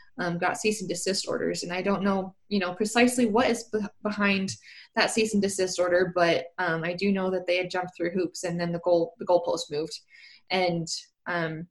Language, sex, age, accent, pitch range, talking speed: English, female, 20-39, American, 180-230 Hz, 210 wpm